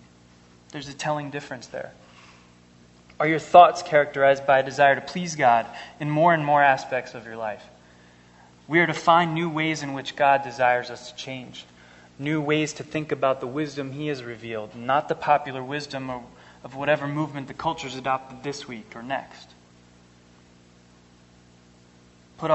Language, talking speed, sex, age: English, 160 wpm, male, 20-39